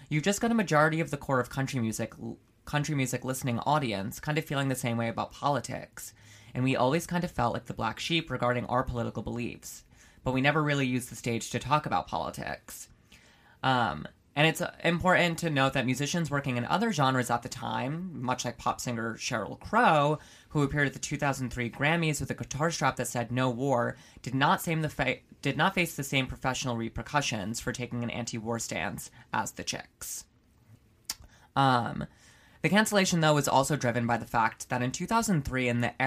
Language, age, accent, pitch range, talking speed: English, 20-39, American, 120-150 Hz, 190 wpm